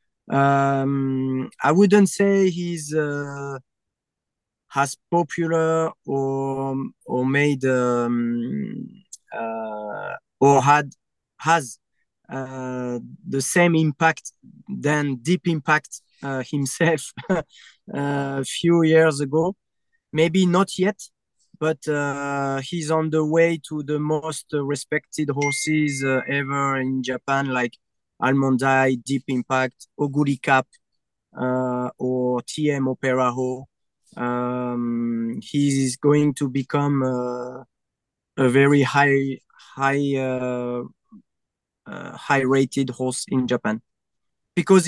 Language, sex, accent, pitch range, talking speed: English, male, French, 130-155 Hz, 105 wpm